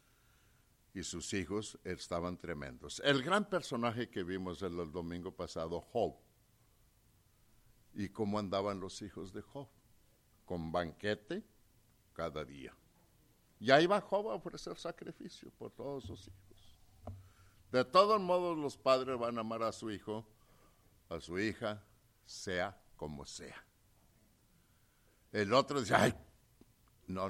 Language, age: English, 60-79